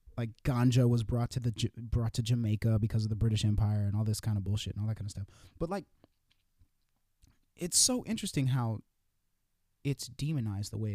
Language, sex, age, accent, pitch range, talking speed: English, male, 30-49, American, 100-125 Hz, 205 wpm